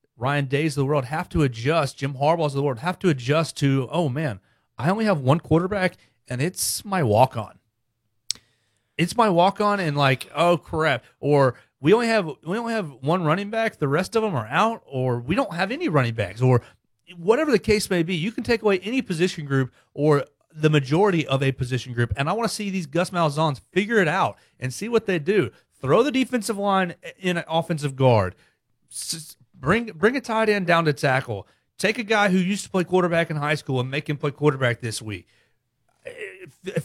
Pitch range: 125-185 Hz